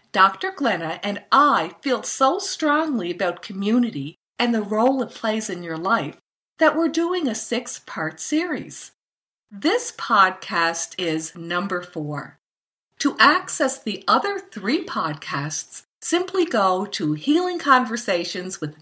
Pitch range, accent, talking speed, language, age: 185-285 Hz, American, 130 wpm, English, 50-69